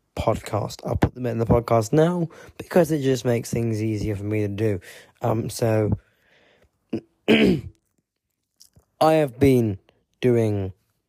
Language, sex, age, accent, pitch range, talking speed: English, male, 20-39, British, 105-130 Hz, 130 wpm